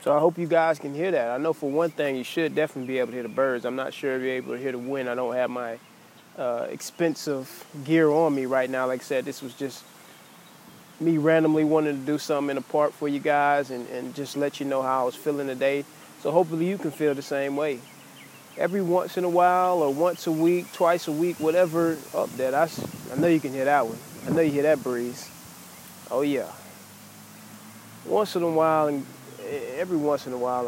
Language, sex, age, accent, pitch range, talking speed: English, male, 20-39, American, 130-160 Hz, 240 wpm